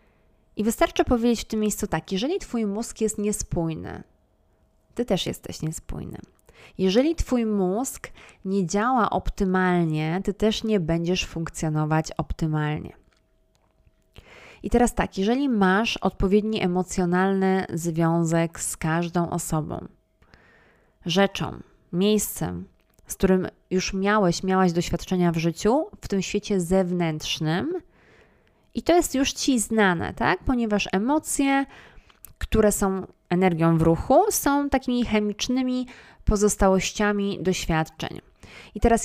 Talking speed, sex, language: 115 wpm, female, Polish